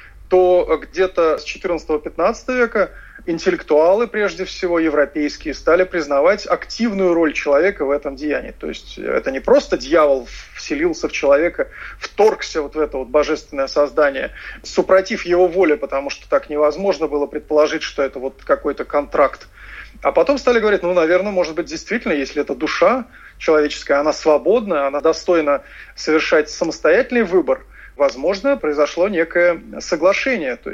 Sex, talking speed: male, 140 wpm